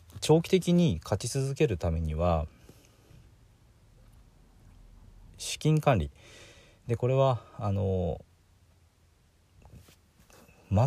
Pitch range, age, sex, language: 85-115 Hz, 40-59, male, Japanese